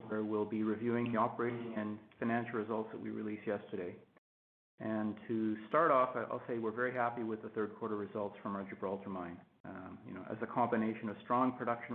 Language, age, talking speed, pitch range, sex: English, 40-59, 200 wpm, 105-120 Hz, male